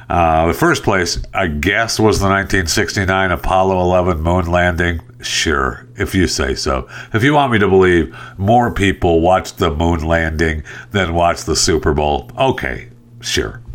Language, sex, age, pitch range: English, male, 60-79, 80-110 Hz